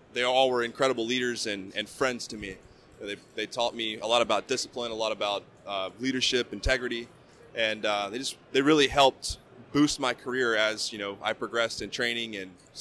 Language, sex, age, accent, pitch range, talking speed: English, male, 20-39, American, 110-130 Hz, 195 wpm